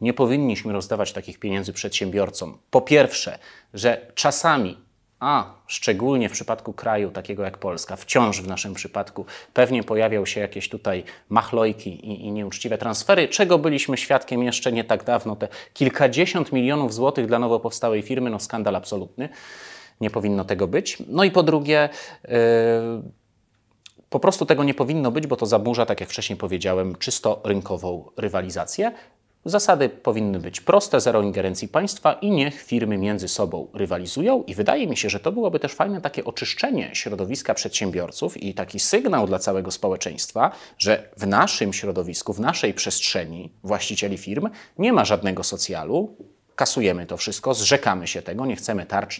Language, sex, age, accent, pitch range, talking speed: Polish, male, 30-49, native, 100-135 Hz, 155 wpm